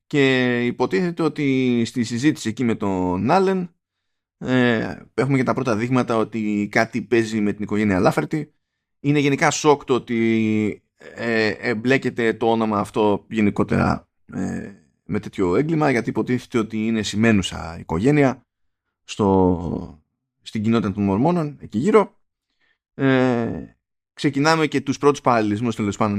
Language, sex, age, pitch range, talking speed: Greek, male, 20-39, 105-140 Hz, 130 wpm